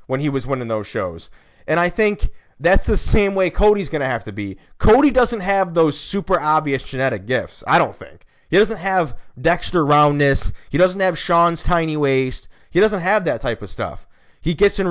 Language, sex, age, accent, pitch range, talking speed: English, male, 20-39, American, 130-175 Hz, 205 wpm